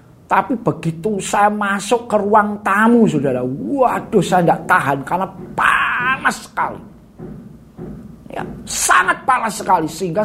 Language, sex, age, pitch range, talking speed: Indonesian, male, 50-69, 195-235 Hz, 115 wpm